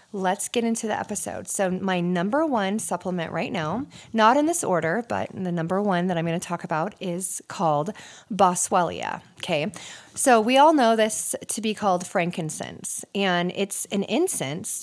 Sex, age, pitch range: female, 30-49, 180-225 Hz